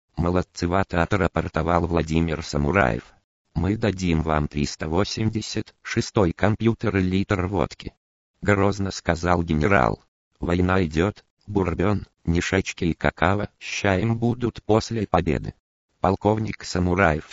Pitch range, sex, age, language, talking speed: 80-105 Hz, male, 50-69, Russian, 95 wpm